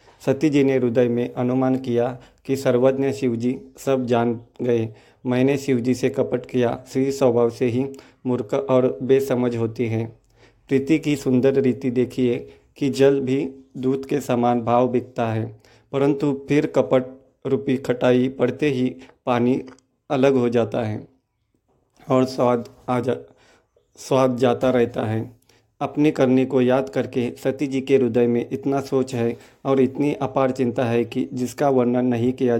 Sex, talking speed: male, 155 wpm